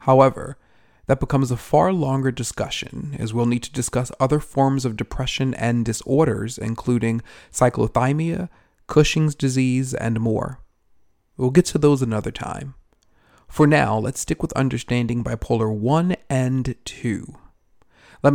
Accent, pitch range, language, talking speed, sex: American, 115-145 Hz, English, 135 wpm, male